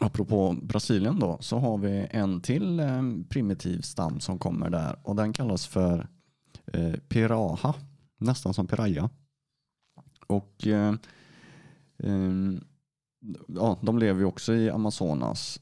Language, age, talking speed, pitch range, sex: Swedish, 30-49, 125 wpm, 90-120 Hz, male